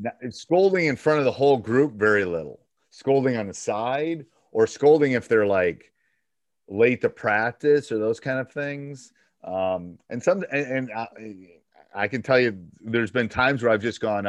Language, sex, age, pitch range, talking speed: English, male, 40-59, 90-135 Hz, 185 wpm